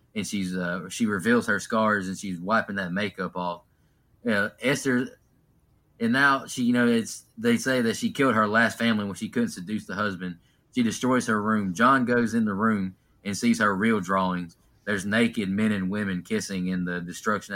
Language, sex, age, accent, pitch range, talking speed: English, male, 20-39, American, 95-130 Hz, 200 wpm